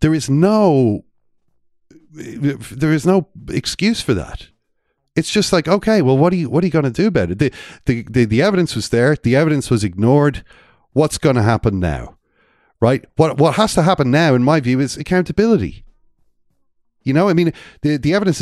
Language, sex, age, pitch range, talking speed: English, male, 40-59, 110-150 Hz, 195 wpm